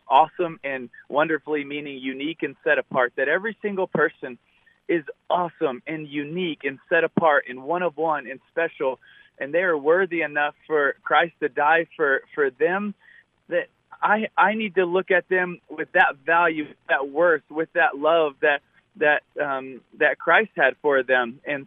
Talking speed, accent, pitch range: 175 wpm, American, 155-195 Hz